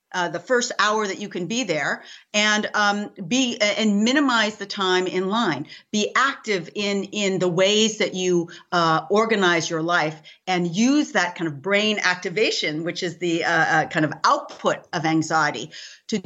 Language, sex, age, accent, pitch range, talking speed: English, female, 40-59, American, 175-230 Hz, 180 wpm